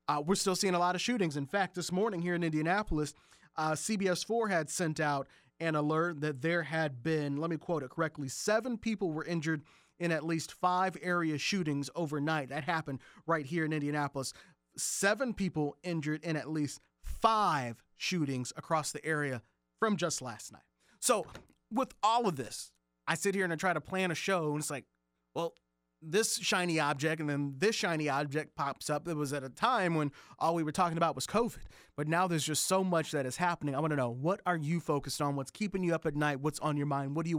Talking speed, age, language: 220 wpm, 40-59, English